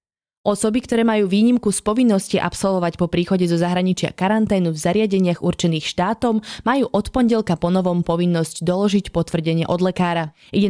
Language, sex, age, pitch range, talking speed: Slovak, female, 20-39, 170-215 Hz, 150 wpm